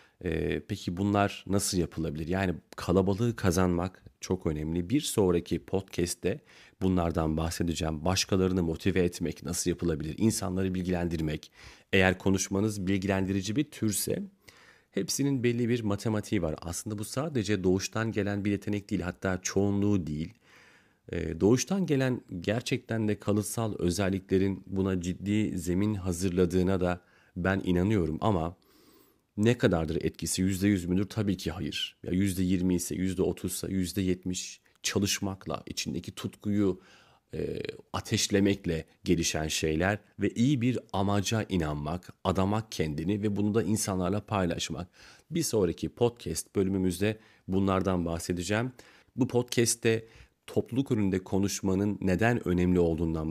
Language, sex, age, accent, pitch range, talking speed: Turkish, male, 40-59, native, 90-105 Hz, 115 wpm